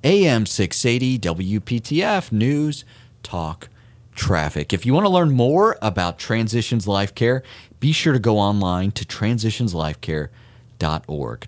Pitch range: 90-120 Hz